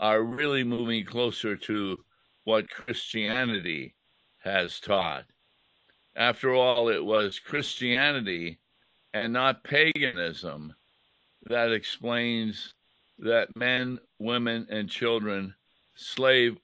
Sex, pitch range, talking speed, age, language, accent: male, 110-130 Hz, 90 wpm, 60-79, English, American